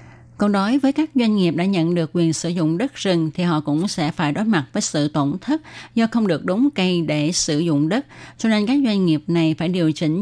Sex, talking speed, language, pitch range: female, 255 wpm, Vietnamese, 155-205 Hz